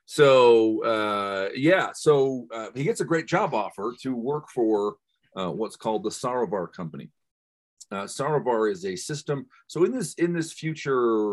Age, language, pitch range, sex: 40-59, English, 90-125 Hz, male